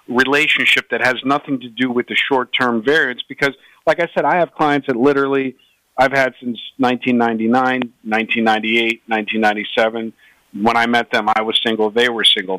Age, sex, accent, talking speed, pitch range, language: 50-69, male, American, 165 wpm, 115-140 Hz, English